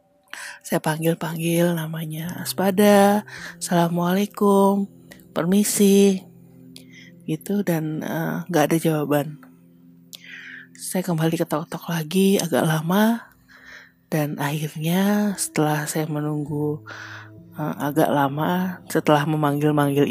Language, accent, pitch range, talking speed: Indonesian, native, 145-175 Hz, 85 wpm